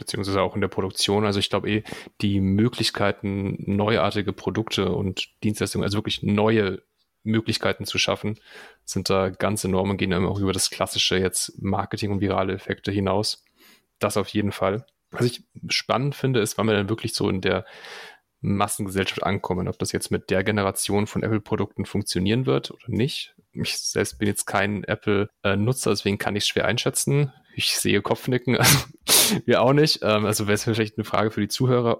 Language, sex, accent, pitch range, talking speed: German, male, German, 95-110 Hz, 180 wpm